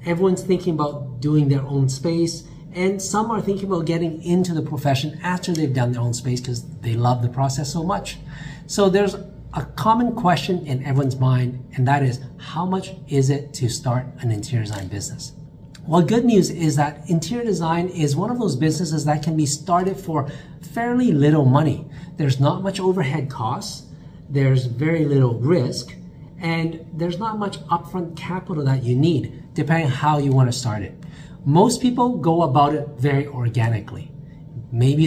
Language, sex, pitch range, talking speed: English, male, 135-170 Hz, 180 wpm